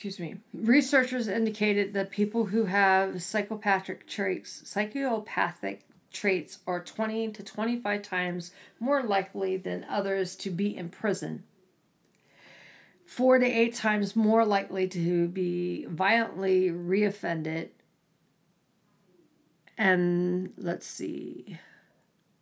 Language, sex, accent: English, female, American